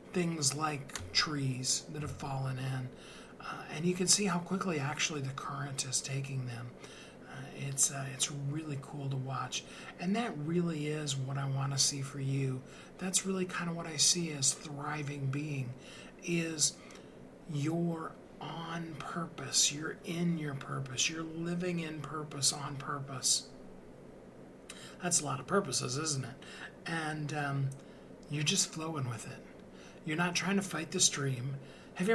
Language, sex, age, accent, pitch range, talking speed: English, male, 40-59, American, 135-165 Hz, 160 wpm